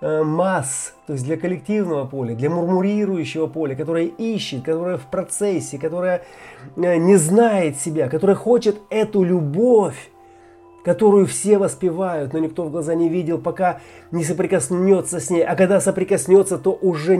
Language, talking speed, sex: Russian, 145 wpm, male